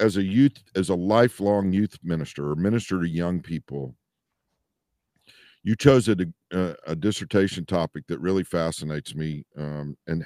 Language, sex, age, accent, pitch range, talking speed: English, male, 50-69, American, 85-105 Hz, 150 wpm